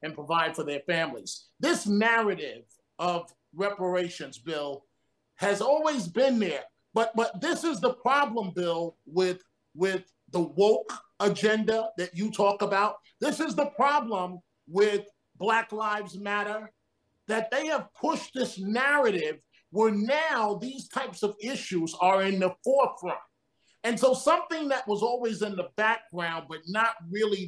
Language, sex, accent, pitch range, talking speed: English, male, American, 185-245 Hz, 145 wpm